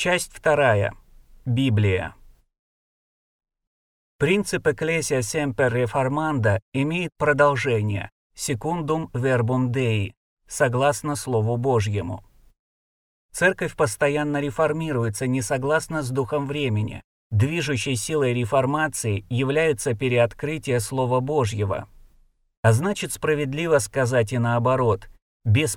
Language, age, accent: Russian, 30-49, native